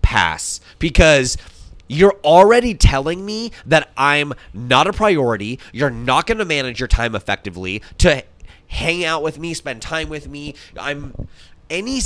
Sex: male